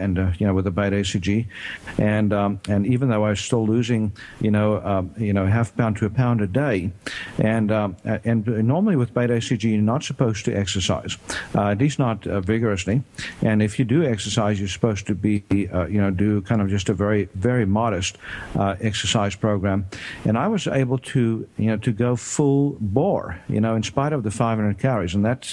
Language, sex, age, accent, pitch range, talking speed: English, male, 50-69, American, 105-125 Hz, 215 wpm